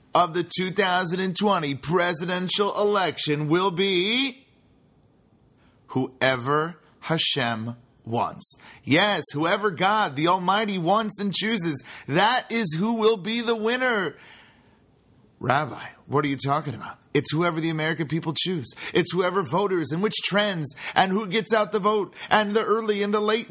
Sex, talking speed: male, 140 wpm